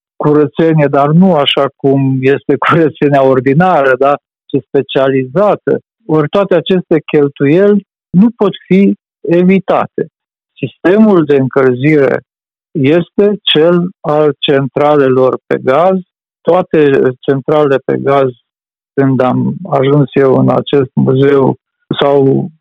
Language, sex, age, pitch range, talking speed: Romanian, male, 50-69, 140-175 Hz, 105 wpm